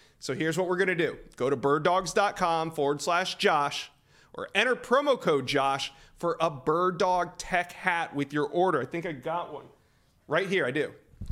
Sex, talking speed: male, 190 wpm